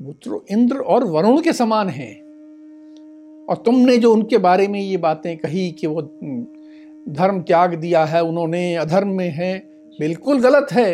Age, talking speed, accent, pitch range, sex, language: 50-69, 155 wpm, native, 175-290 Hz, male, Hindi